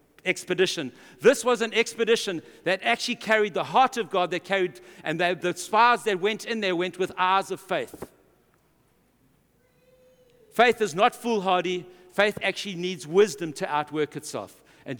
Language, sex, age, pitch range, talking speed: English, male, 60-79, 175-230 Hz, 155 wpm